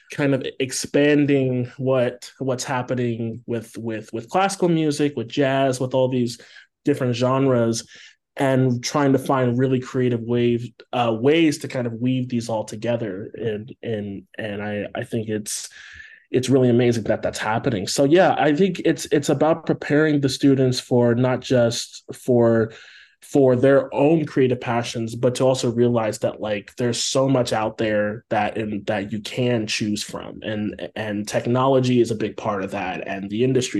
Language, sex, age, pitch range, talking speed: English, male, 20-39, 115-135 Hz, 170 wpm